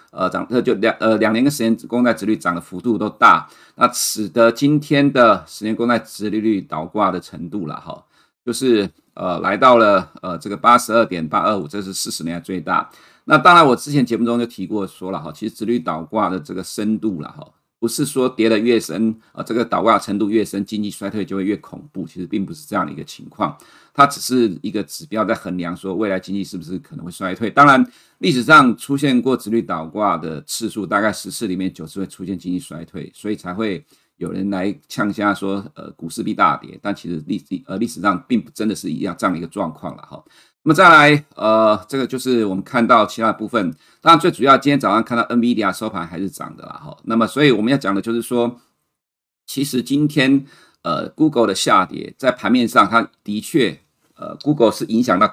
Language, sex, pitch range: Chinese, male, 95-125 Hz